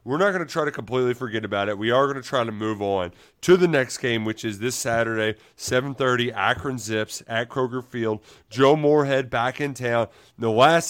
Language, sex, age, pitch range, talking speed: English, male, 30-49, 115-145 Hz, 215 wpm